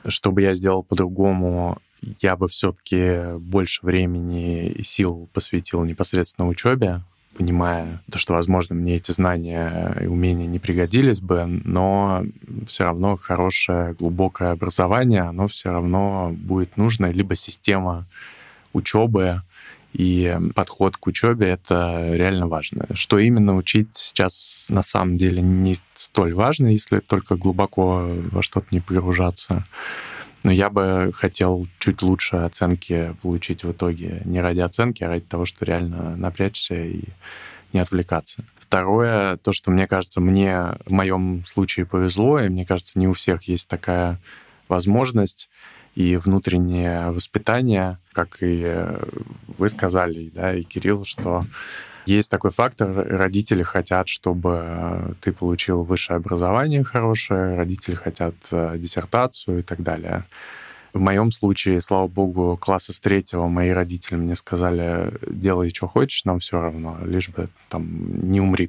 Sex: male